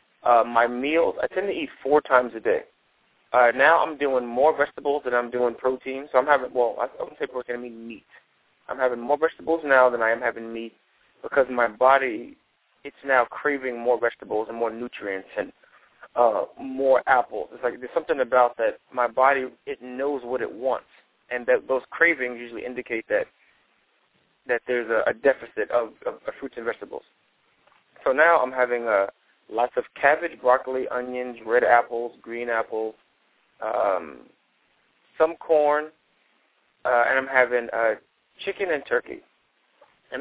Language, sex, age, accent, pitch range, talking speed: English, male, 20-39, American, 120-150 Hz, 170 wpm